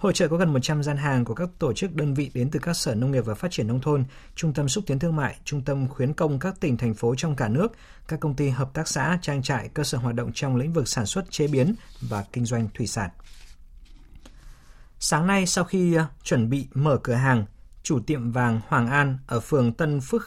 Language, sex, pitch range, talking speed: Vietnamese, male, 120-150 Hz, 245 wpm